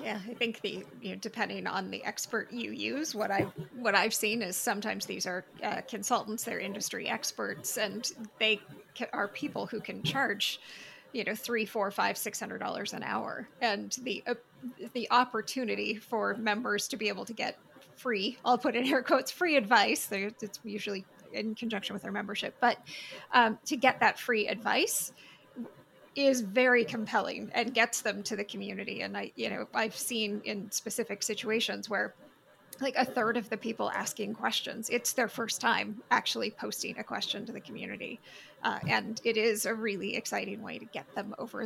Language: English